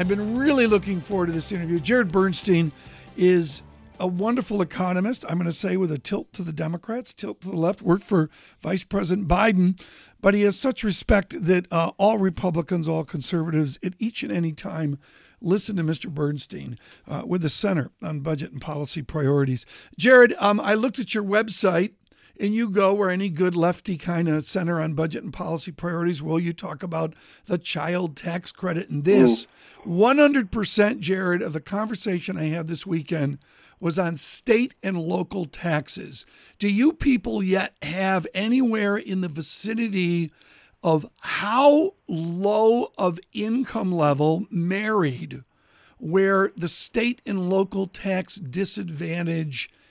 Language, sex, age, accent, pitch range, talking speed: English, male, 60-79, American, 165-205 Hz, 160 wpm